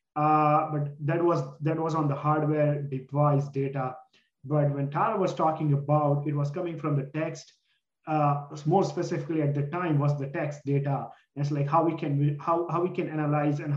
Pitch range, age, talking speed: 140-160 Hz, 30-49, 195 wpm